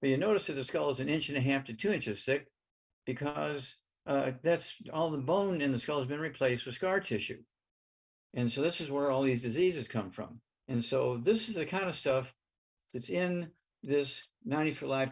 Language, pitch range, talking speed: English, 120-155 Hz, 215 wpm